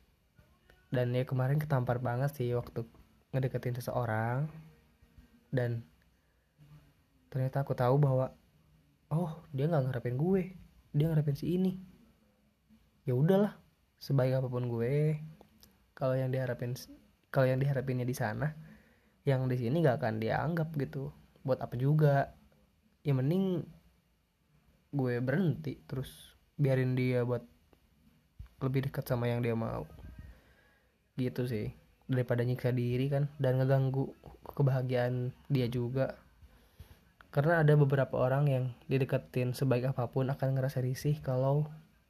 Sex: male